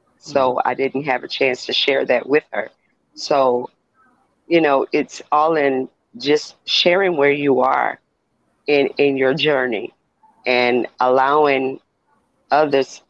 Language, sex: English, female